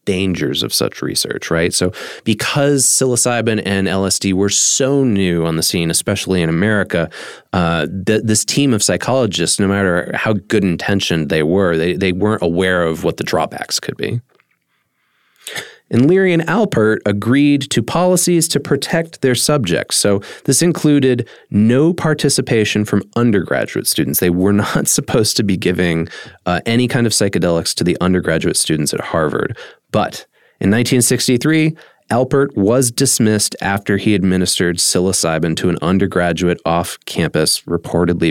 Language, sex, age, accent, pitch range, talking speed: English, male, 30-49, American, 90-130 Hz, 145 wpm